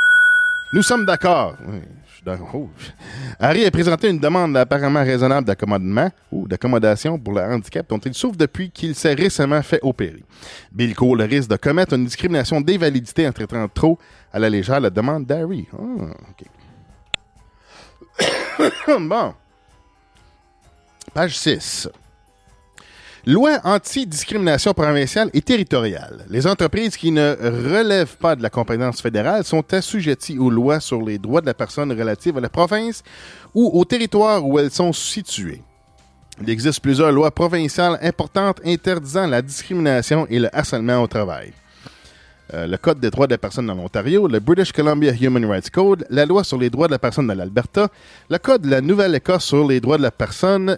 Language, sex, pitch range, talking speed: English, male, 115-180 Hz, 160 wpm